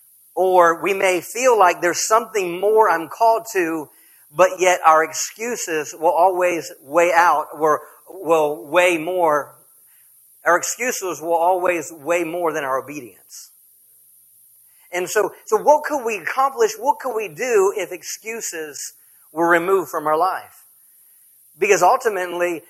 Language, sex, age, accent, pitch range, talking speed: English, male, 50-69, American, 165-230 Hz, 135 wpm